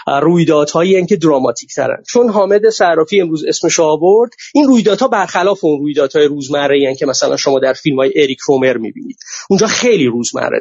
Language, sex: Persian, male